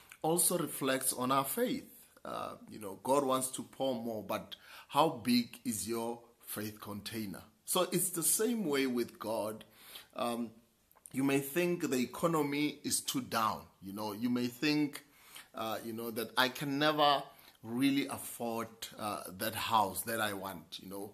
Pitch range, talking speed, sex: 115-160 Hz, 165 wpm, male